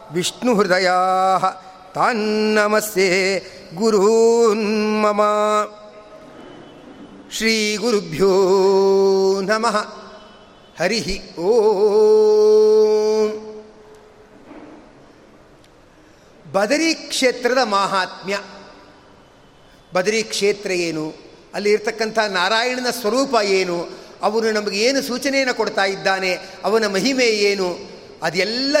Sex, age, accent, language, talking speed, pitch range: male, 50-69, native, Kannada, 60 wpm, 190-230 Hz